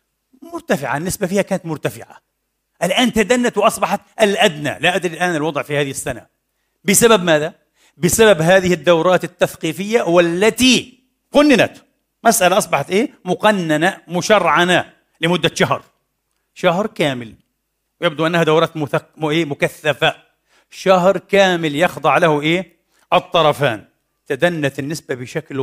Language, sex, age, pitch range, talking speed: Arabic, male, 40-59, 160-225 Hz, 110 wpm